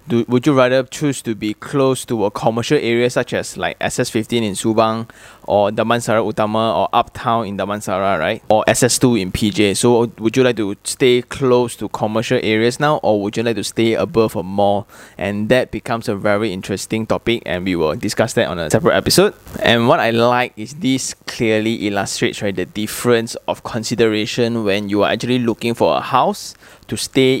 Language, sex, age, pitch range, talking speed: English, male, 20-39, 105-125 Hz, 195 wpm